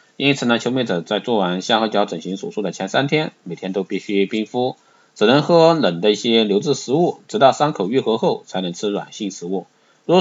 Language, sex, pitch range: Chinese, male, 105-155 Hz